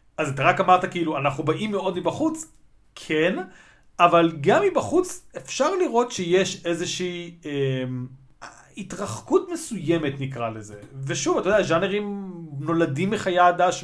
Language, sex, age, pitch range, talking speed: Hebrew, male, 30-49, 145-200 Hz, 125 wpm